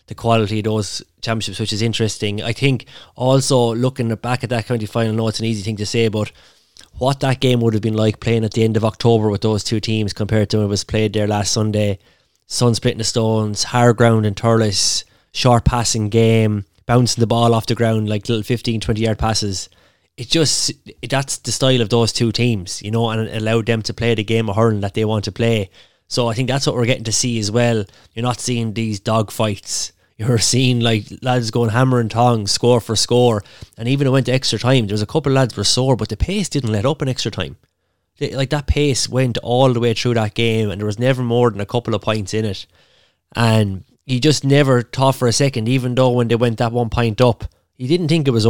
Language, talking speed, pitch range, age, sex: English, 245 wpm, 110-125 Hz, 20-39, male